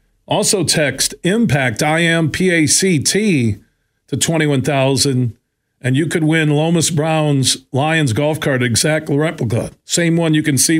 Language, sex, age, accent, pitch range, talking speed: English, male, 50-69, American, 130-160 Hz, 120 wpm